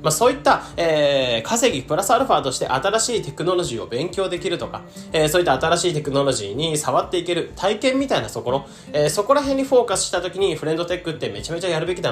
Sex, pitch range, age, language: male, 125-180 Hz, 20-39, Japanese